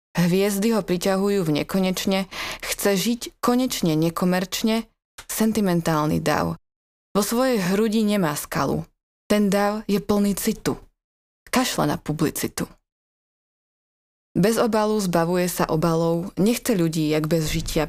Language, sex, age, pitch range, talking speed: Slovak, female, 20-39, 165-210 Hz, 115 wpm